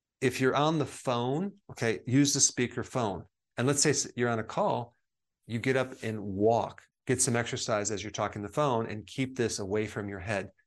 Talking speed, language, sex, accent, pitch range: 210 wpm, English, male, American, 105-130 Hz